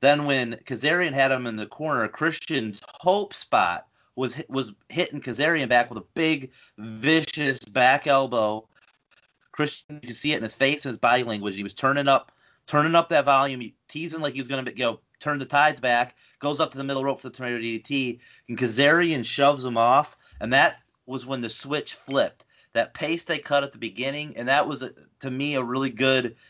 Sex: male